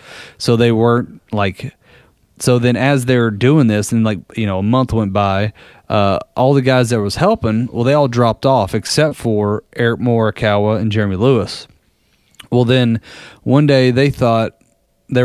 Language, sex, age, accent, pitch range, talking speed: English, male, 30-49, American, 110-135 Hz, 175 wpm